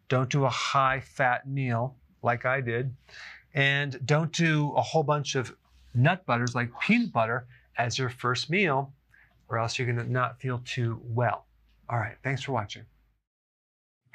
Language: English